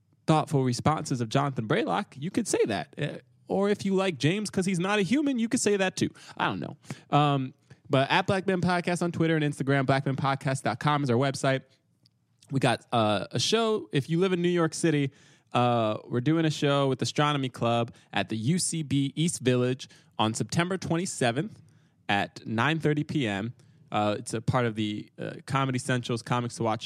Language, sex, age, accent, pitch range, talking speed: English, male, 20-39, American, 120-155 Hz, 190 wpm